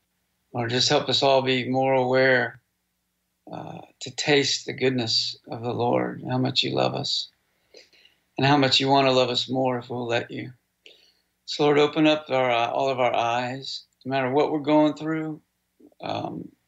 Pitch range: 90-135 Hz